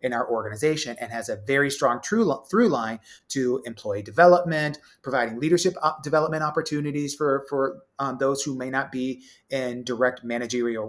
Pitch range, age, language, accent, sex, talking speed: 120-155 Hz, 30-49, English, American, male, 160 wpm